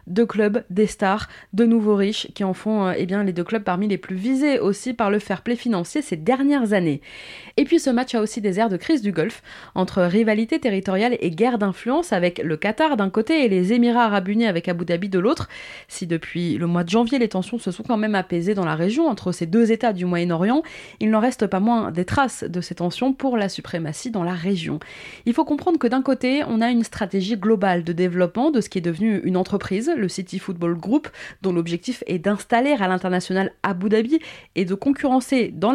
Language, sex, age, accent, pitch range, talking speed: French, female, 20-39, French, 180-235 Hz, 225 wpm